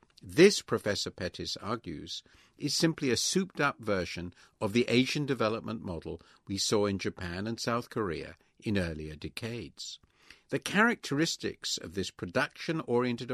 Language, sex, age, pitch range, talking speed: English, male, 50-69, 90-135 Hz, 130 wpm